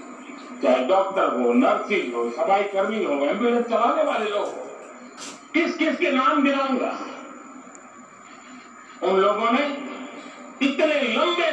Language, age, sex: Malayalam, 50-69, male